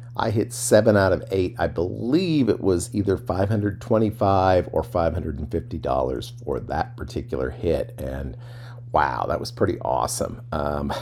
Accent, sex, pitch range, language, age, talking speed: American, male, 85-120 Hz, English, 50-69, 135 wpm